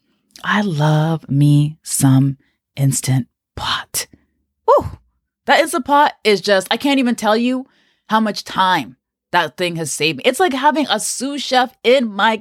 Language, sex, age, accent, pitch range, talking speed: English, female, 20-39, American, 160-255 Hz, 160 wpm